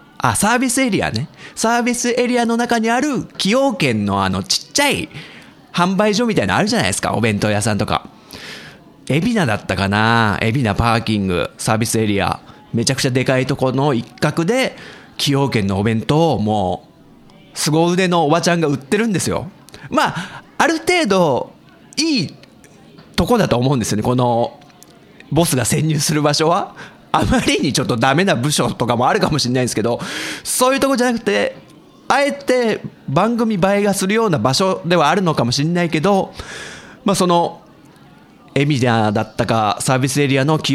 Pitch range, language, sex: 125-210 Hz, Japanese, male